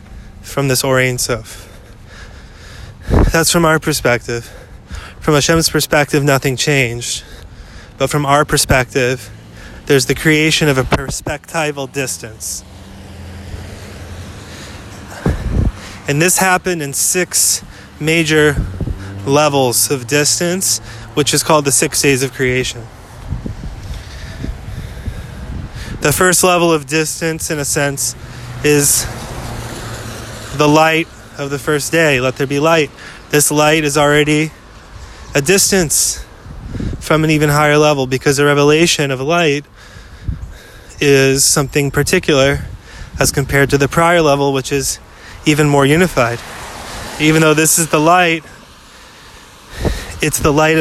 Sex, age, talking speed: male, 20-39, 115 wpm